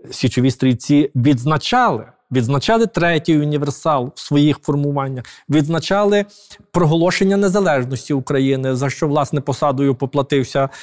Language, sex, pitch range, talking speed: Ukrainian, male, 135-175 Hz, 100 wpm